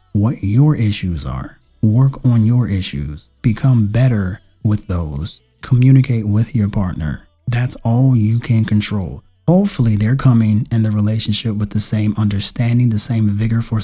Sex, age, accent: male, 30-49, American